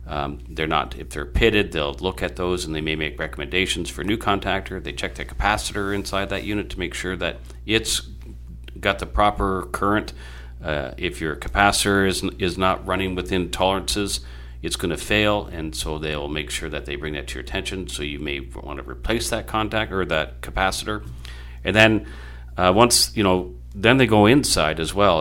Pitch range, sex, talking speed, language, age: 65-95 Hz, male, 200 wpm, English, 40-59